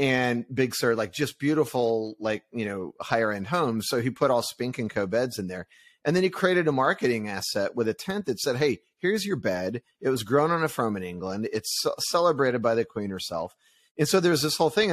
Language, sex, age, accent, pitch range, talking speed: English, male, 30-49, American, 115-145 Hz, 235 wpm